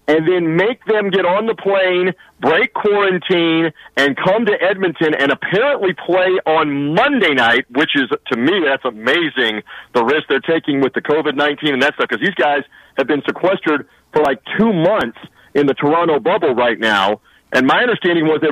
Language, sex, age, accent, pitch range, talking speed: English, male, 40-59, American, 150-195 Hz, 185 wpm